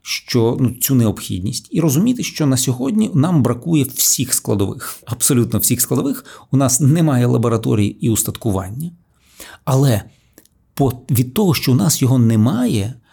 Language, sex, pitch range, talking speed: Ukrainian, male, 110-150 Hz, 135 wpm